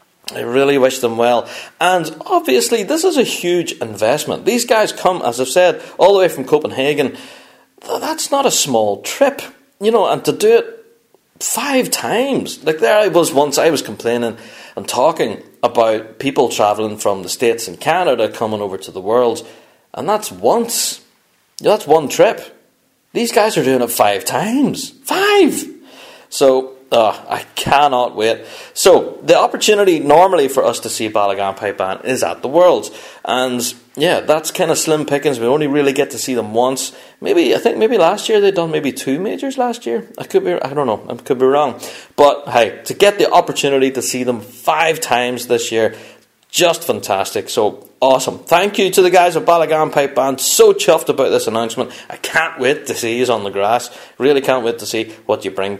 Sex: male